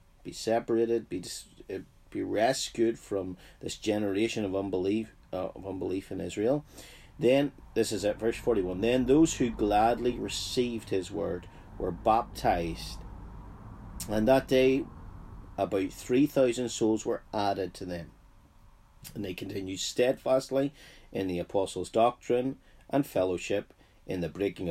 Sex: male